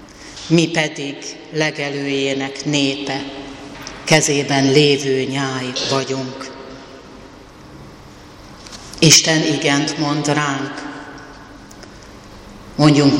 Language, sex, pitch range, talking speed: Hungarian, female, 140-155 Hz, 60 wpm